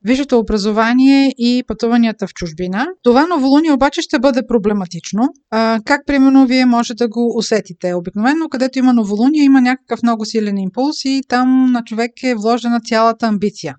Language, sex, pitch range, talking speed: Bulgarian, female, 210-250 Hz, 160 wpm